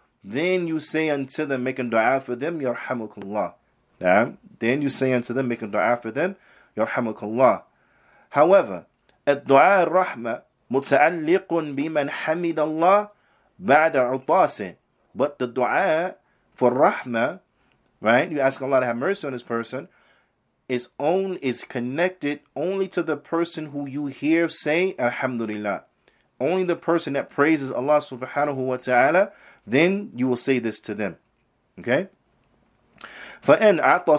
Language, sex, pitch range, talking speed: English, male, 125-170 Hz, 130 wpm